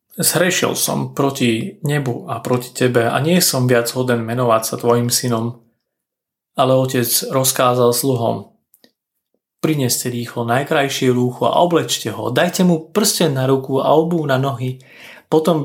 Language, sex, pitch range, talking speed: Slovak, male, 125-165 Hz, 140 wpm